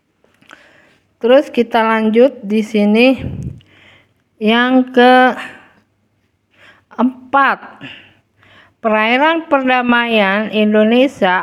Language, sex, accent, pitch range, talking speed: Indonesian, female, native, 190-235 Hz, 55 wpm